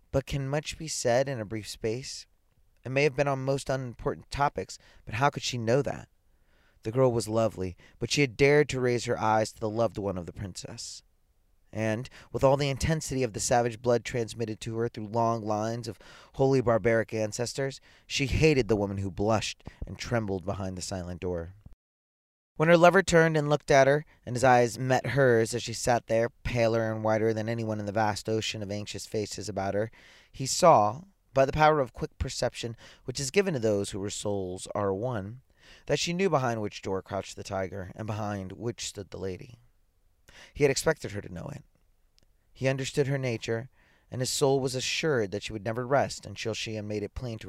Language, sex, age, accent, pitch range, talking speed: English, male, 30-49, American, 100-130 Hz, 205 wpm